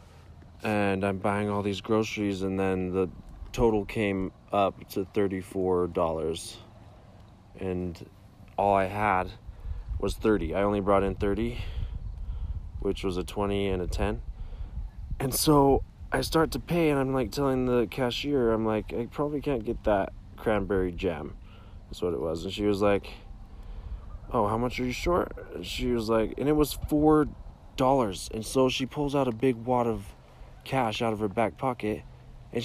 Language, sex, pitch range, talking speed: English, male, 95-120 Hz, 170 wpm